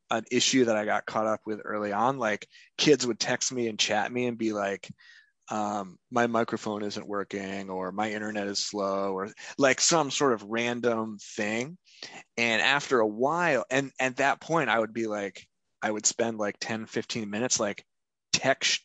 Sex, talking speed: male, 190 wpm